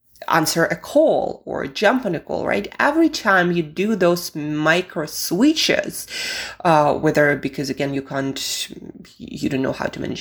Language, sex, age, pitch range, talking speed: English, female, 20-39, 150-215 Hz, 165 wpm